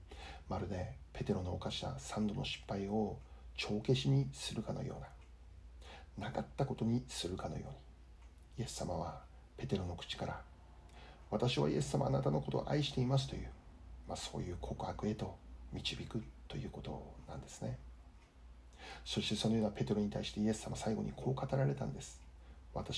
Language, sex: Japanese, male